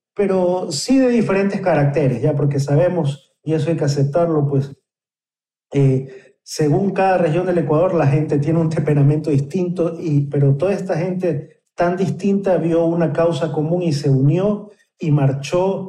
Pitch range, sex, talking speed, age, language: 140-180 Hz, male, 160 wpm, 40-59, Spanish